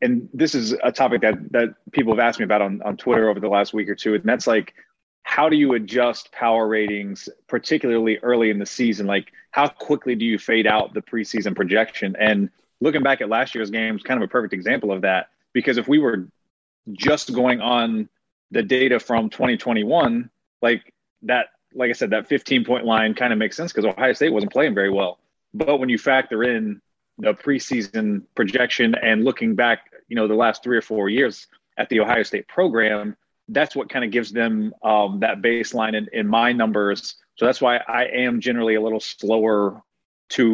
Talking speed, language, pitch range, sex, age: 205 wpm, English, 110-125 Hz, male, 30-49